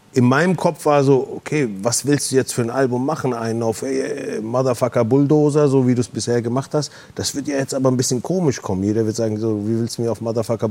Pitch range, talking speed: 110-135 Hz, 240 wpm